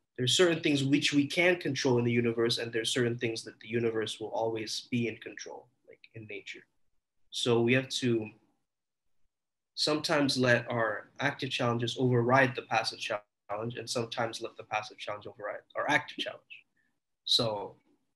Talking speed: 170 wpm